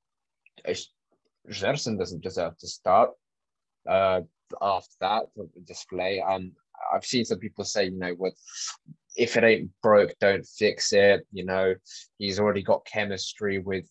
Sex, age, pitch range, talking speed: male, 20-39, 95-120 Hz, 140 wpm